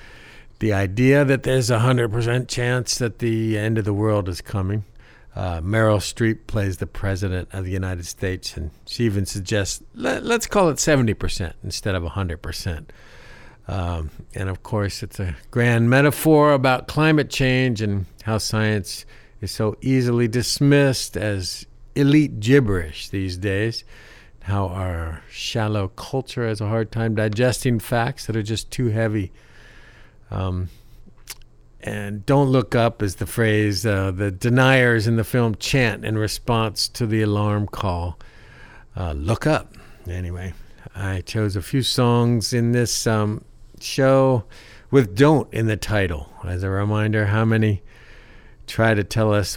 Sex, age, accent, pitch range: male, 60-79, American, 100-125 Hz